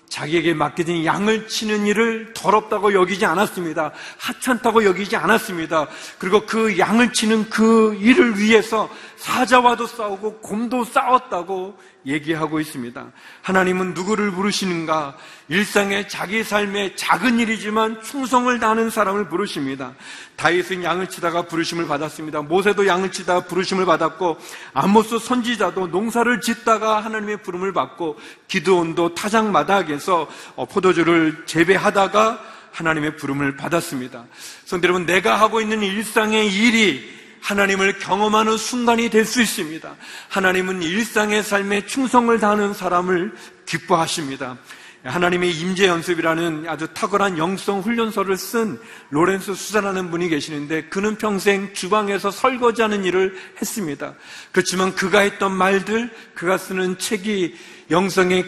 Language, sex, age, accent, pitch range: Korean, male, 40-59, native, 170-220 Hz